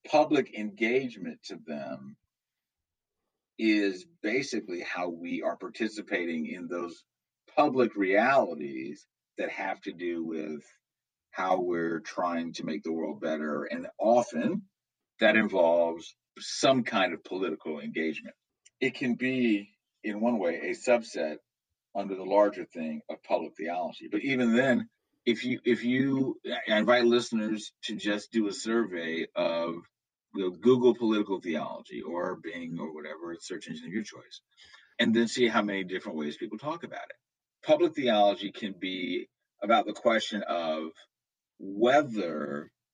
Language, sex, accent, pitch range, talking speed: English, male, American, 85-120 Hz, 135 wpm